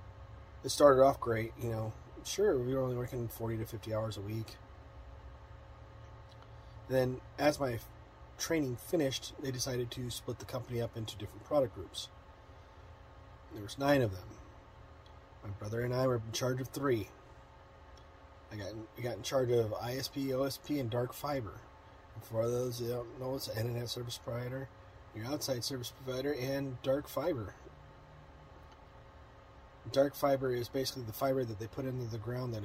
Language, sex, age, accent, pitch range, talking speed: English, male, 30-49, American, 105-130 Hz, 170 wpm